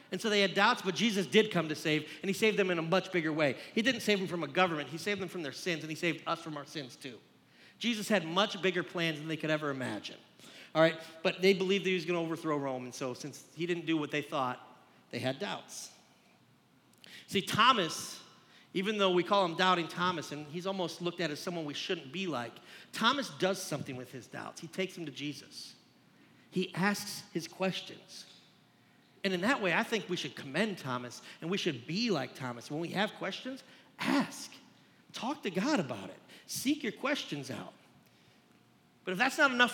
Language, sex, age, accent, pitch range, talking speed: English, male, 40-59, American, 155-205 Hz, 220 wpm